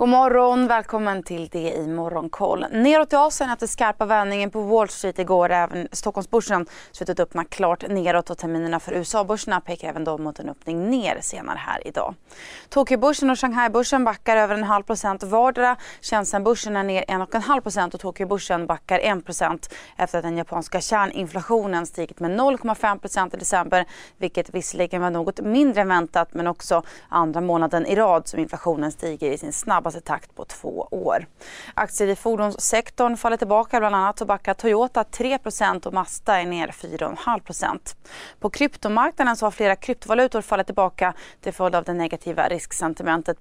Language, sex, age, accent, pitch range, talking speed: Swedish, female, 30-49, native, 170-220 Hz, 170 wpm